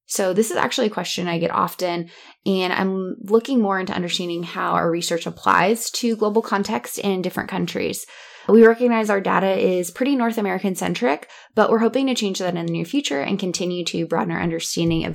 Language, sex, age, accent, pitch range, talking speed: English, female, 10-29, American, 170-210 Hz, 200 wpm